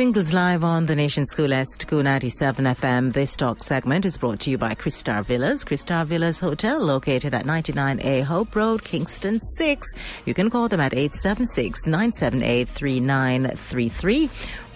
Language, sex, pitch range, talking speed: English, female, 135-180 Hz, 140 wpm